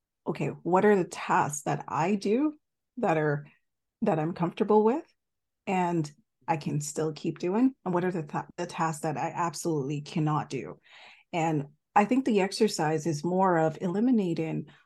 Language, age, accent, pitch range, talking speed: English, 30-49, American, 155-200 Hz, 165 wpm